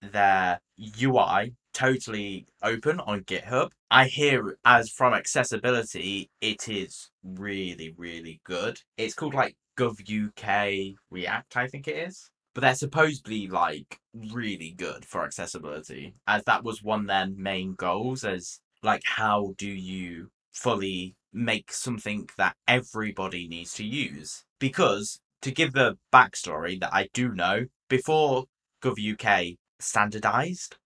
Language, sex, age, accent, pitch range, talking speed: English, male, 10-29, British, 95-125 Hz, 130 wpm